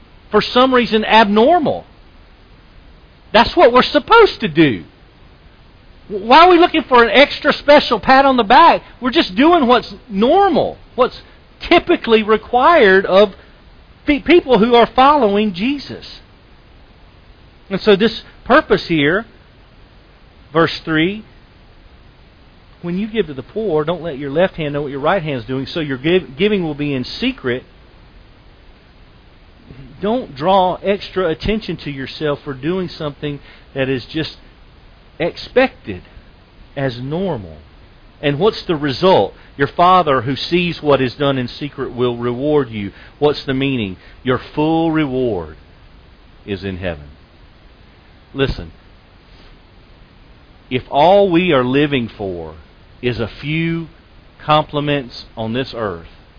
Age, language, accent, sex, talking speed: 40-59, English, American, male, 130 wpm